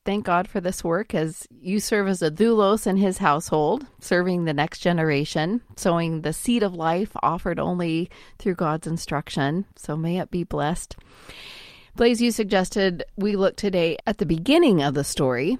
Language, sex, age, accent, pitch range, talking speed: English, female, 30-49, American, 165-205 Hz, 175 wpm